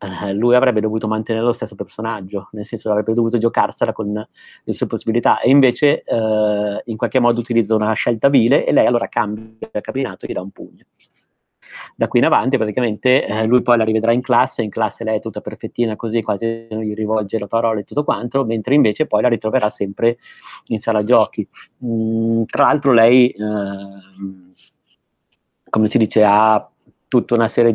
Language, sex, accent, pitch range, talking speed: Italian, male, native, 105-115 Hz, 190 wpm